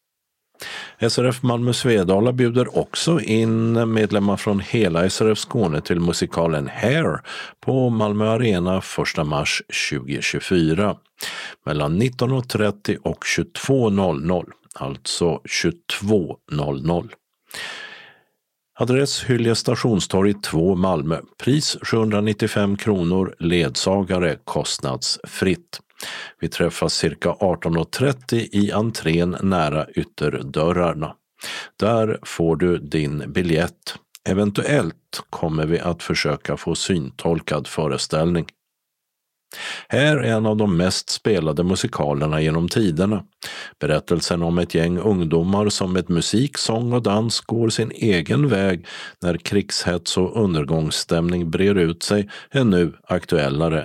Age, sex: 50-69, male